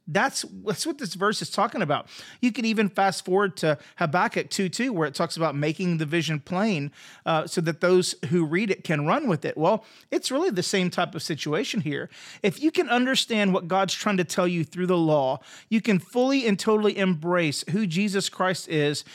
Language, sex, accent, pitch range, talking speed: English, male, American, 170-205 Hz, 215 wpm